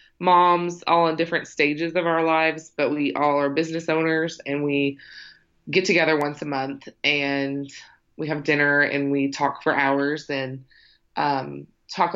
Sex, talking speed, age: female, 165 wpm, 20-39